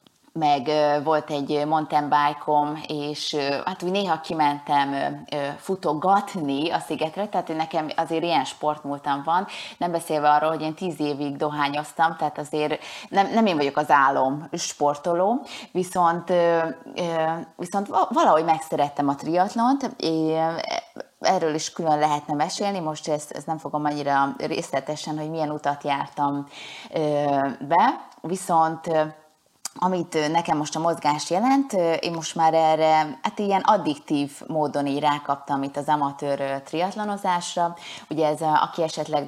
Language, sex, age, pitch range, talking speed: Hungarian, female, 20-39, 150-170 Hz, 125 wpm